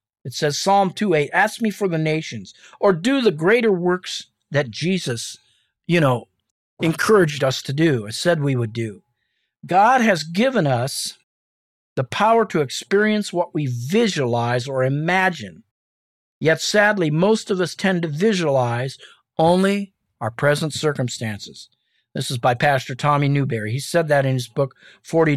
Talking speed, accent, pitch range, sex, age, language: 155 wpm, American, 125-185 Hz, male, 50-69, English